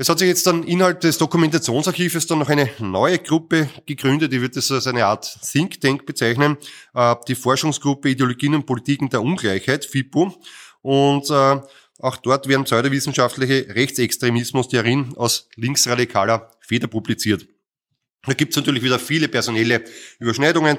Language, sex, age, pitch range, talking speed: German, male, 20-39, 115-135 Hz, 145 wpm